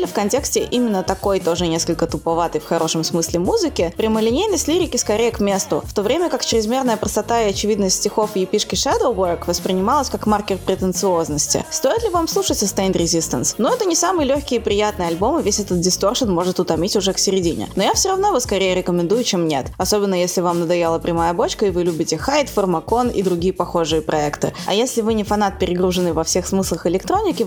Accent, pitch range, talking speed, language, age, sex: native, 175-230 Hz, 200 wpm, Russian, 20-39, female